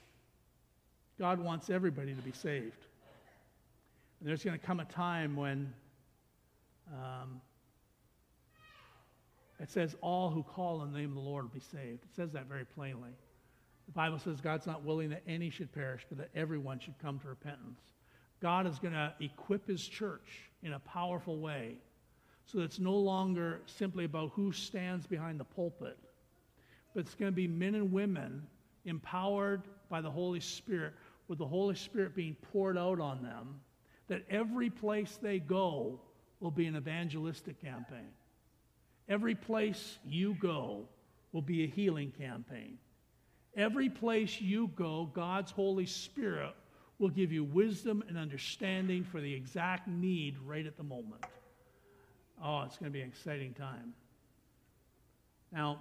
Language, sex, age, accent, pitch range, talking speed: English, male, 60-79, American, 140-190 Hz, 155 wpm